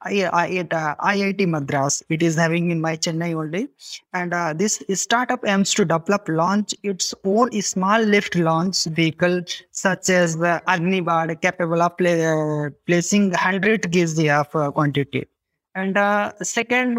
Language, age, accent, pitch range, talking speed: English, 20-39, Indian, 165-200 Hz, 160 wpm